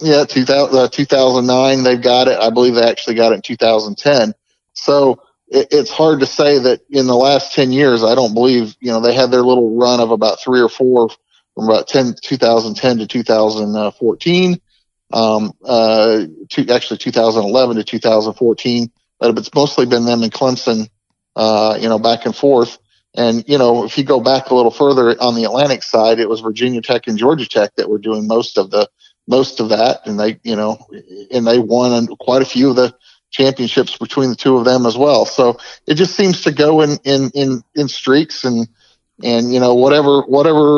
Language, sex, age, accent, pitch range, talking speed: English, male, 40-59, American, 115-135 Hz, 200 wpm